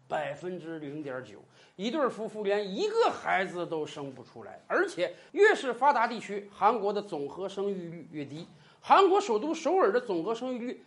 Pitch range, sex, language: 195-325 Hz, male, Chinese